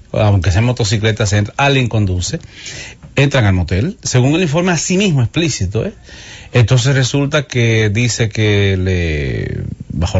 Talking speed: 155 wpm